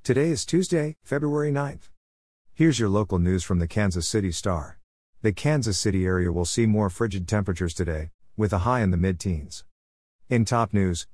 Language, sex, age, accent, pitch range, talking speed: English, male, 50-69, American, 90-110 Hz, 180 wpm